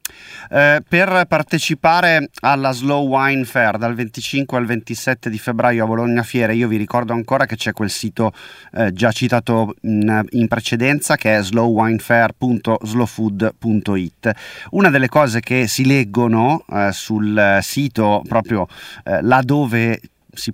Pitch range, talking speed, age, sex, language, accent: 110-135 Hz, 135 wpm, 30-49, male, Italian, native